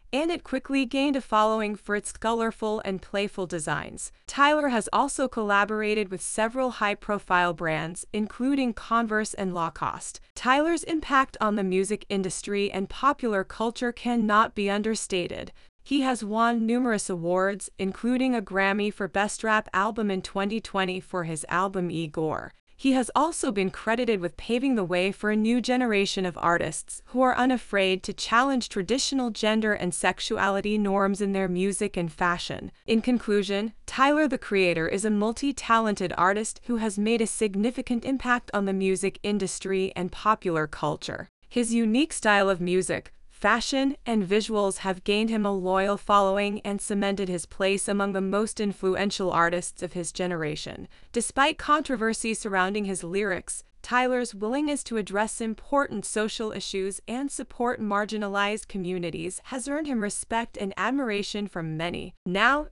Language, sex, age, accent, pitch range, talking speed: English, female, 20-39, American, 195-240 Hz, 150 wpm